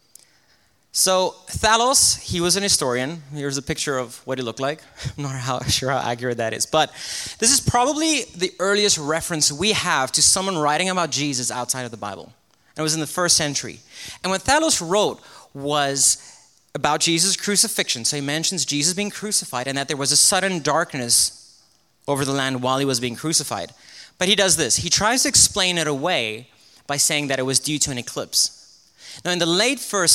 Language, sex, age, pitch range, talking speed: English, male, 30-49, 130-175 Hz, 195 wpm